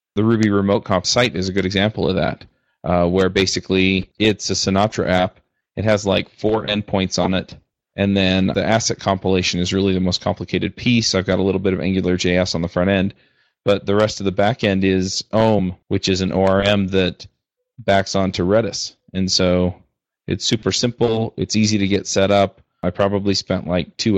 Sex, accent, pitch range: male, American, 95-105 Hz